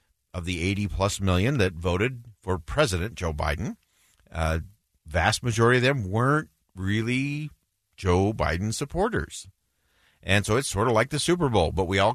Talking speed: 160 wpm